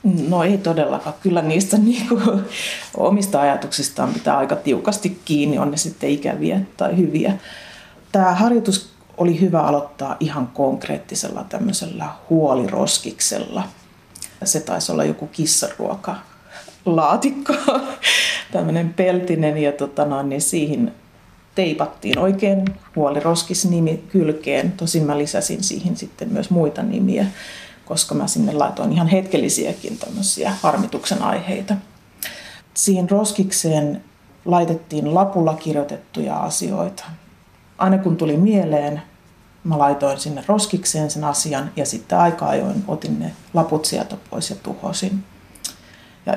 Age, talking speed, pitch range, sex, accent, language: 30-49, 115 wpm, 150-200 Hz, female, native, Finnish